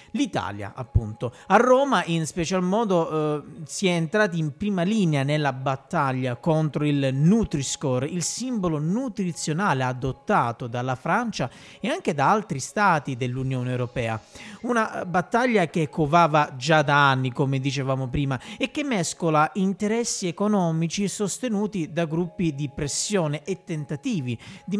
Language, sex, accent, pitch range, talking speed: Italian, male, native, 140-205 Hz, 135 wpm